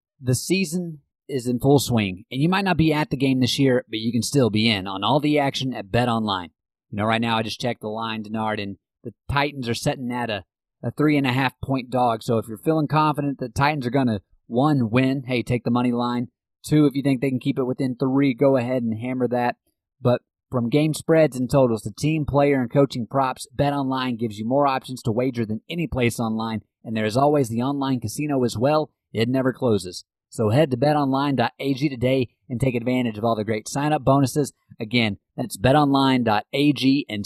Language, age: English, 30-49